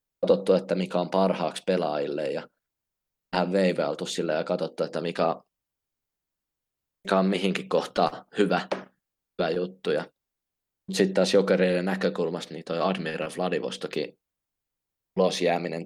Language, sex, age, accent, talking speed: Finnish, male, 20-39, native, 110 wpm